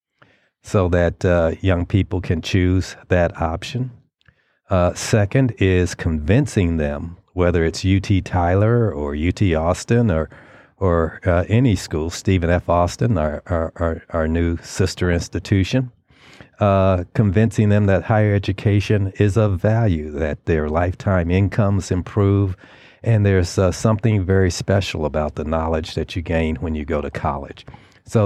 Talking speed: 145 wpm